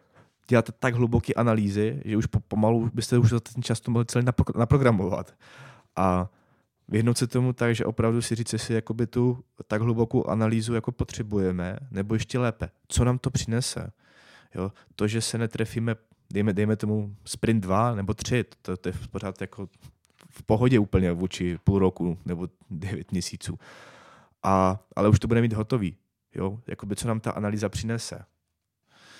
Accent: native